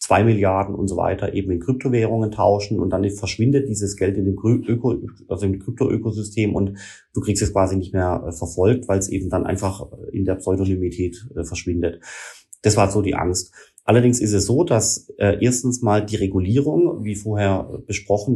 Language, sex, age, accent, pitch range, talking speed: German, male, 30-49, German, 95-110 Hz, 180 wpm